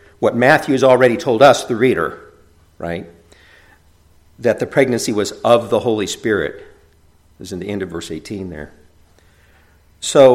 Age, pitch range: 50-69, 85-120 Hz